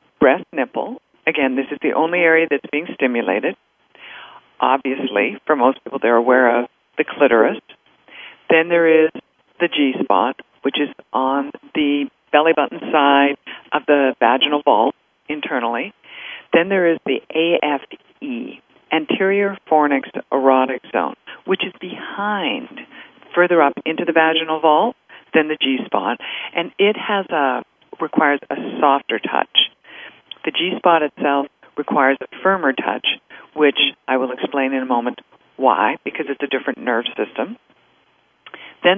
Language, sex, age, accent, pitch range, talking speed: English, female, 50-69, American, 135-180 Hz, 135 wpm